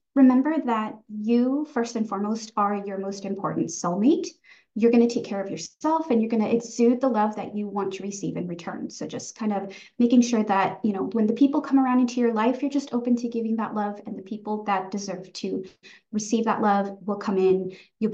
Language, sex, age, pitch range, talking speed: English, female, 20-39, 205-255 Hz, 220 wpm